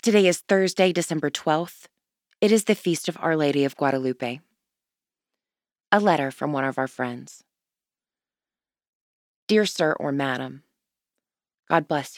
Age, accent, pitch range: 20-39, American, 135-170 Hz